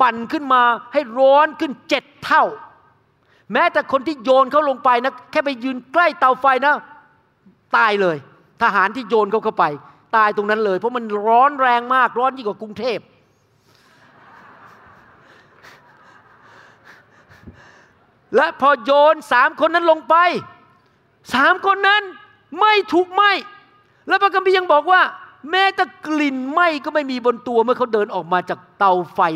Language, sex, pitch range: Thai, male, 215-300 Hz